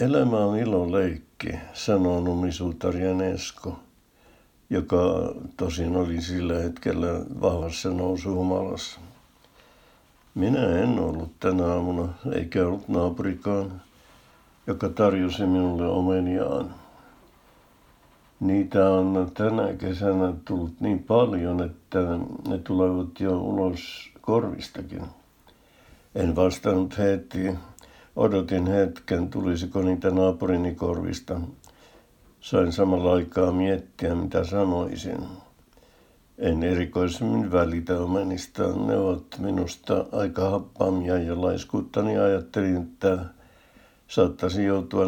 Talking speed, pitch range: 90 wpm, 90-95 Hz